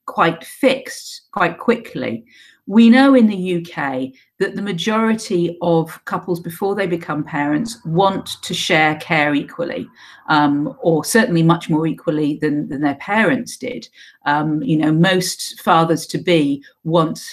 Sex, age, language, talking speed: female, 50-69, English, 145 wpm